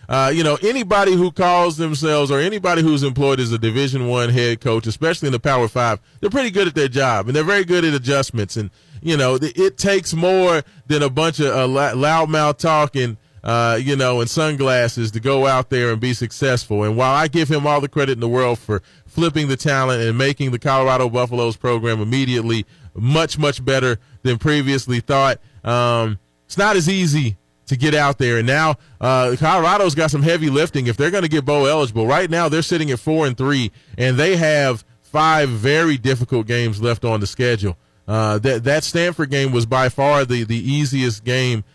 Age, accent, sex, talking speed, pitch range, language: 30-49, American, male, 205 wpm, 120-150 Hz, English